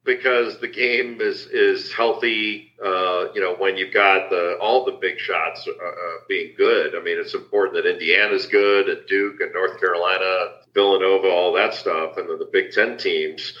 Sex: male